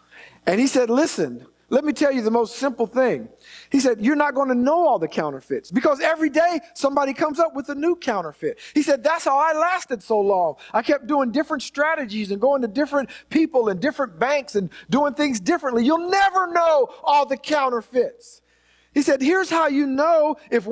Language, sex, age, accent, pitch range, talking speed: English, male, 50-69, American, 255-325 Hz, 205 wpm